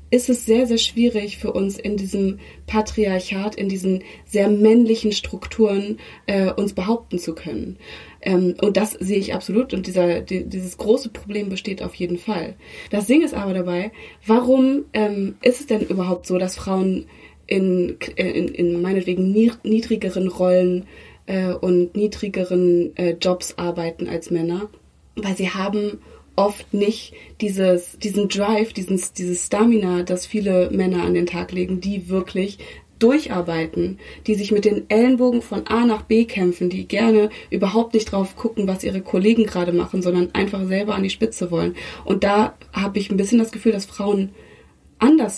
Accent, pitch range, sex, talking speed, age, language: German, 185-215 Hz, female, 165 wpm, 20-39, German